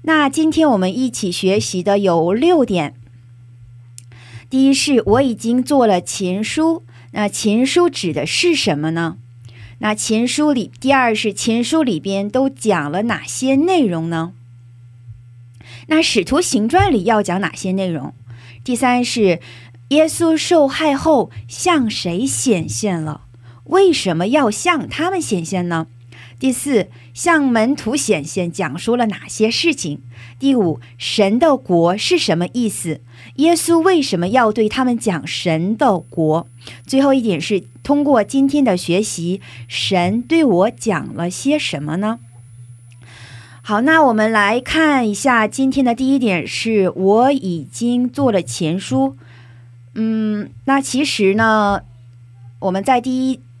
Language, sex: Korean, female